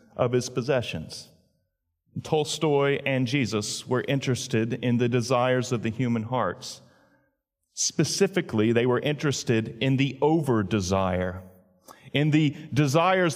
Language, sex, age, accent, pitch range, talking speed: English, male, 40-59, American, 120-165 Hz, 110 wpm